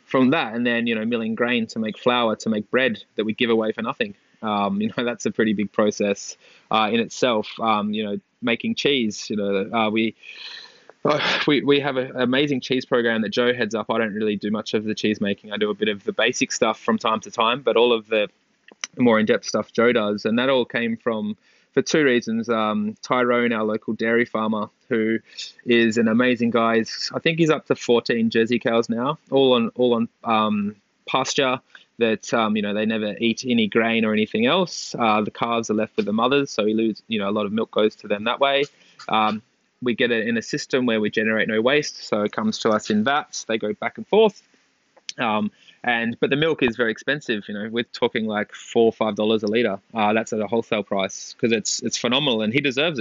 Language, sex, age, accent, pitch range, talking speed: English, male, 20-39, Australian, 105-120 Hz, 230 wpm